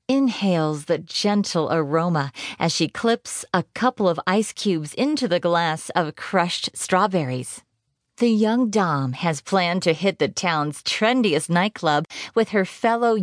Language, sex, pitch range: English, female, 160-210 Hz